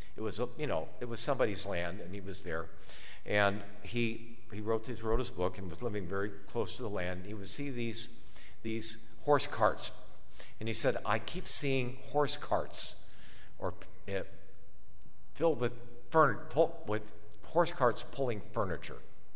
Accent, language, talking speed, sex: American, English, 165 wpm, male